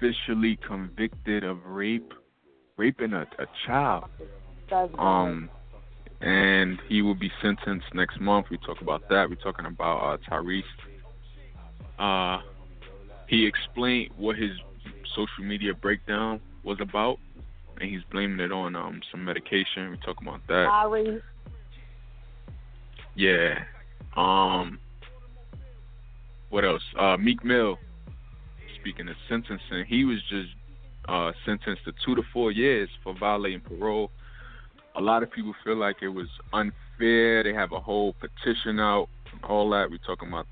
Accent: American